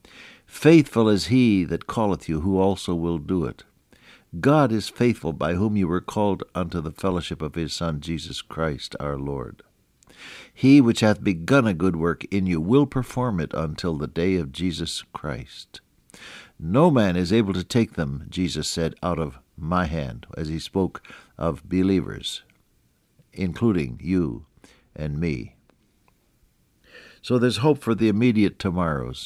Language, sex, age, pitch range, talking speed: English, male, 60-79, 80-110 Hz, 155 wpm